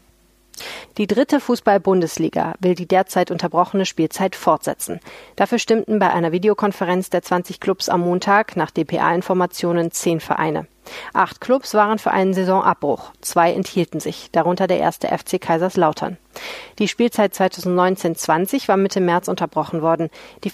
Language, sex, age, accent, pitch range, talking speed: German, female, 40-59, German, 170-210 Hz, 135 wpm